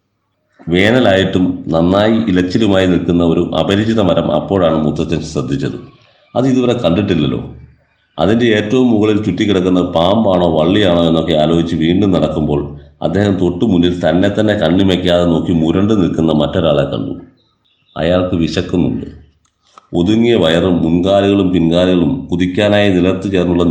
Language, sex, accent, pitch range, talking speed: Malayalam, male, native, 85-100 Hz, 110 wpm